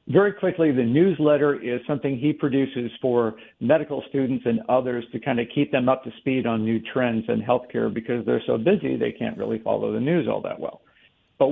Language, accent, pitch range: English, American, 120-145 Hz